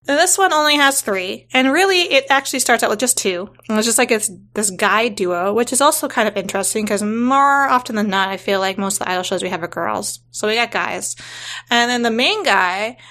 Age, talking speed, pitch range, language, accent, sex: 20-39, 245 wpm, 205-250 Hz, English, American, female